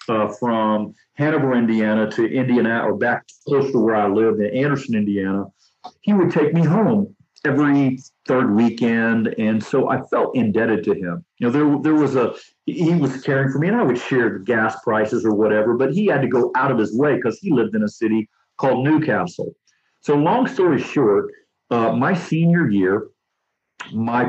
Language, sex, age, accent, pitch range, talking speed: English, male, 50-69, American, 110-150 Hz, 190 wpm